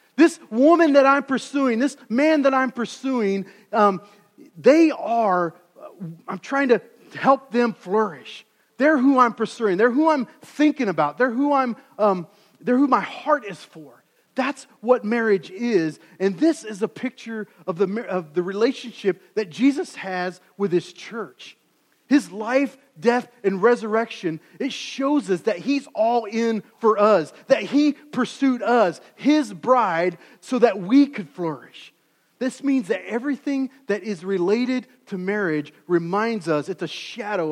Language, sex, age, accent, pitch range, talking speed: English, male, 40-59, American, 180-255 Hz, 155 wpm